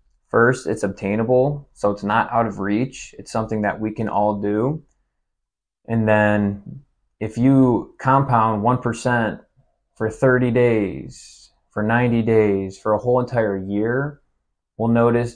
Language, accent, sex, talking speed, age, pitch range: English, American, male, 135 wpm, 20-39, 100-115 Hz